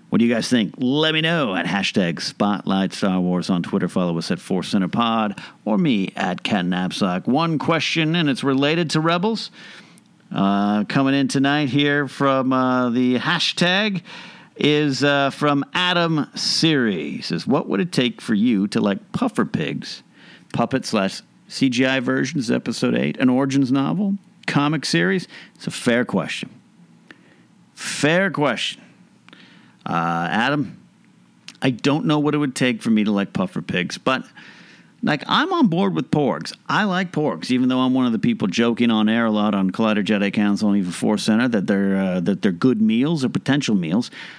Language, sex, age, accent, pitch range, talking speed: English, male, 50-69, American, 115-190 Hz, 170 wpm